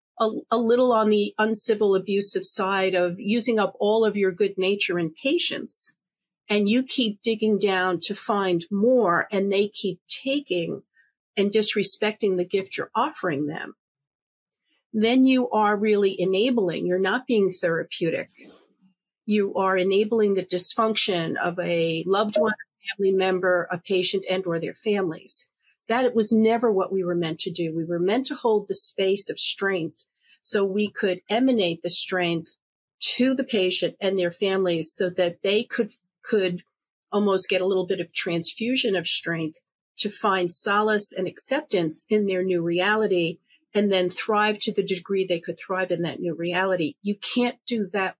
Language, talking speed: English, 165 wpm